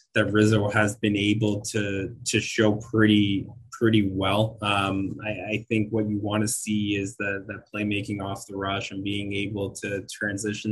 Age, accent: 20-39, American